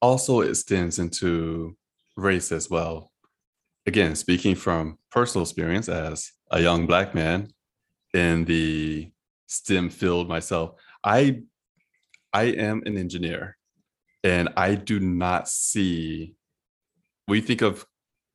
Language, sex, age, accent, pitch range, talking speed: English, male, 20-39, American, 80-95 Hz, 110 wpm